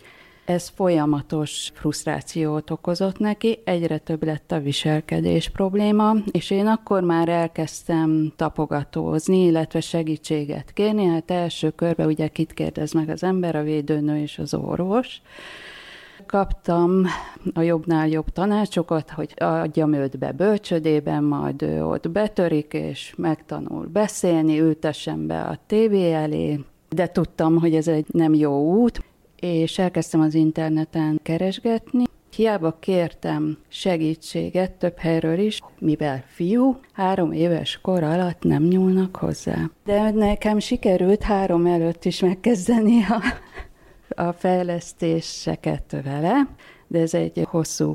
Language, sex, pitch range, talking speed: Hungarian, female, 155-185 Hz, 120 wpm